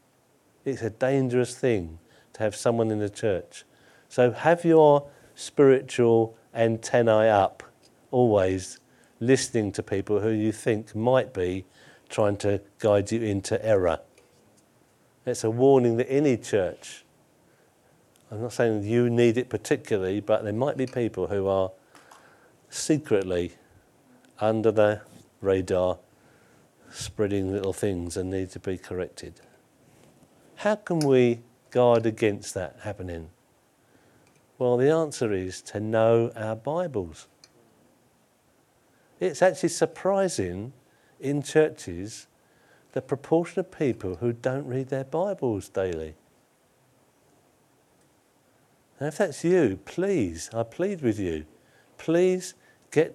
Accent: British